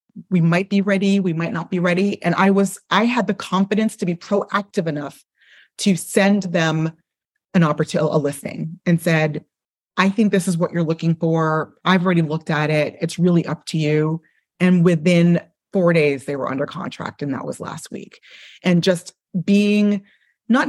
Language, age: English, 30-49